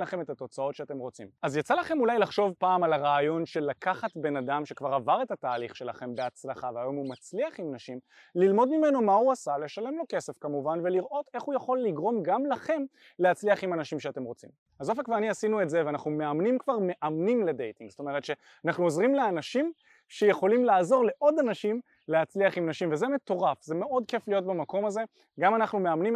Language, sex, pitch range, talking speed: Hebrew, male, 150-215 Hz, 190 wpm